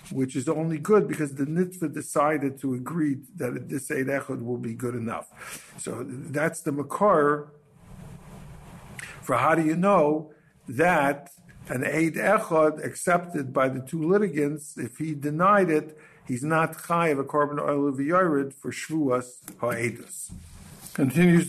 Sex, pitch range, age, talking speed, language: male, 130-160 Hz, 60-79, 150 wpm, English